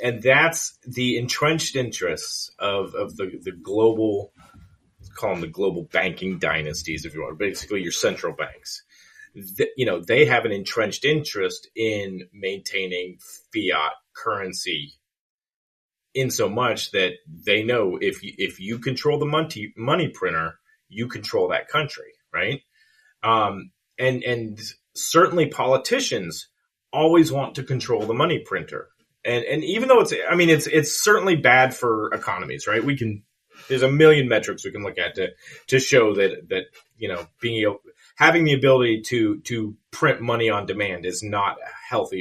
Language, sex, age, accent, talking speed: English, male, 30-49, American, 160 wpm